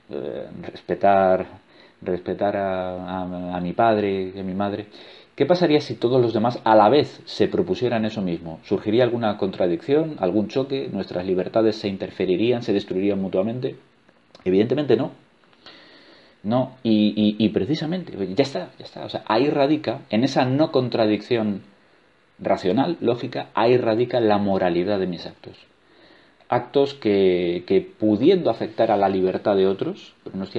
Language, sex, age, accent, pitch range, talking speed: Spanish, male, 40-59, Spanish, 90-110 Hz, 155 wpm